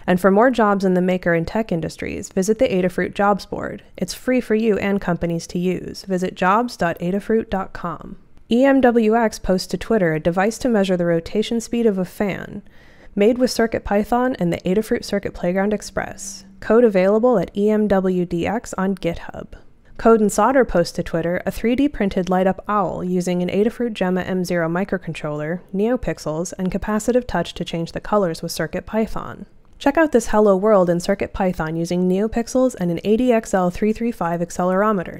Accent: American